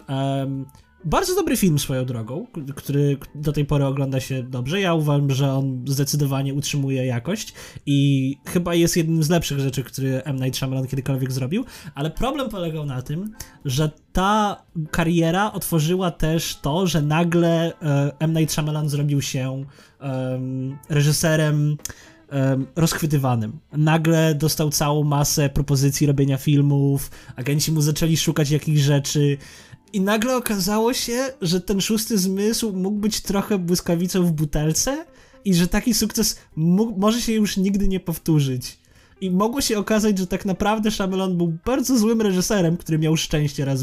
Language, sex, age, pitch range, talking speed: Polish, male, 20-39, 140-190 Hz, 150 wpm